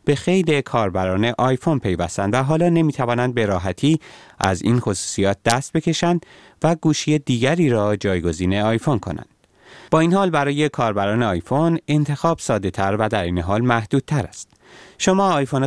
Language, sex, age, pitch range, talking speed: Persian, male, 30-49, 100-145 Hz, 155 wpm